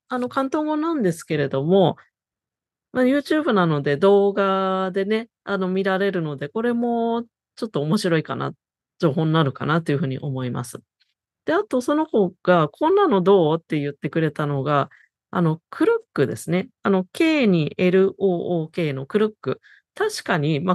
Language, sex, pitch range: Japanese, female, 160-230 Hz